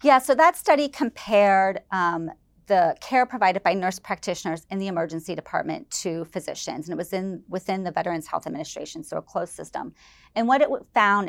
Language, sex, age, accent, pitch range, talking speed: English, female, 30-49, American, 180-220 Hz, 185 wpm